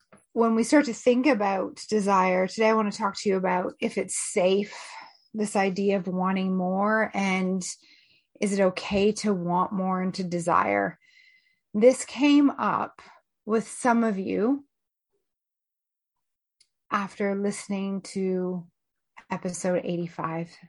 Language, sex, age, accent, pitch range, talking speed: English, female, 30-49, American, 190-230 Hz, 130 wpm